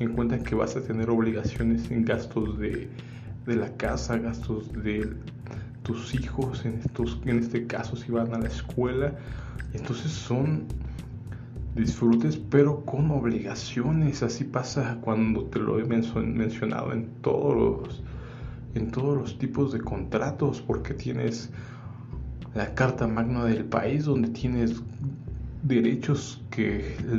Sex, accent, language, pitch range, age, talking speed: male, Mexican, Spanish, 110-125 Hz, 20-39, 130 wpm